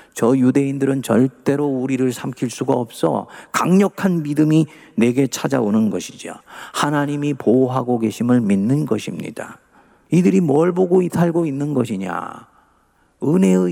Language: Korean